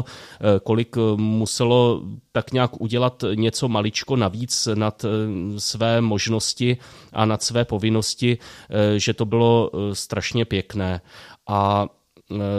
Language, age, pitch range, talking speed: Czech, 30-49, 105-115 Hz, 100 wpm